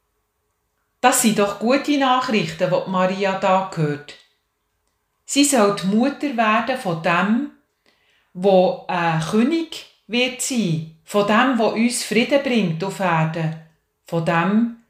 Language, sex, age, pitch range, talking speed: German, female, 40-59, 160-210 Hz, 120 wpm